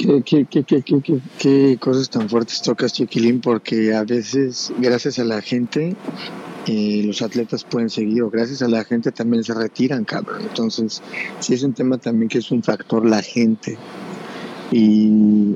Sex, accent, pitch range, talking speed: male, Mexican, 110-130 Hz, 175 wpm